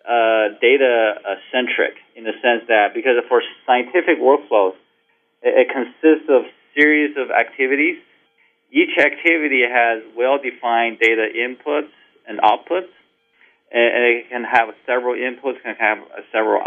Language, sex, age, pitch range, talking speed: English, male, 40-59, 115-160 Hz, 125 wpm